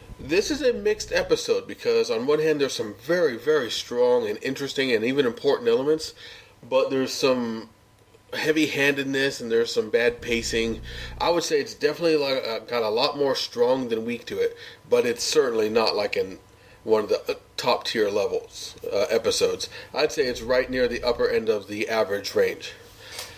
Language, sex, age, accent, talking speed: English, male, 30-49, American, 175 wpm